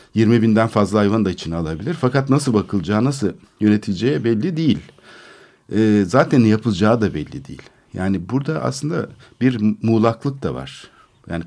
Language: Turkish